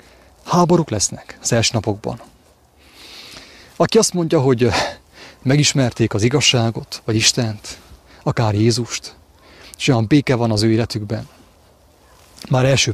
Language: English